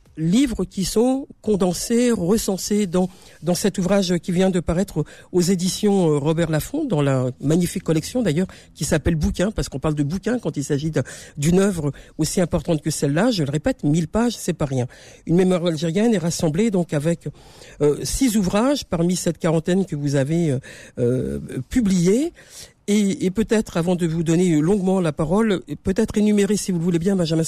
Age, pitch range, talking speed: 50-69, 155-205 Hz, 185 wpm